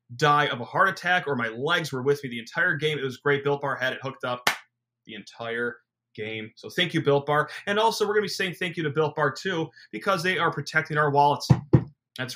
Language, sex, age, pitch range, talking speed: English, male, 30-49, 130-165 Hz, 250 wpm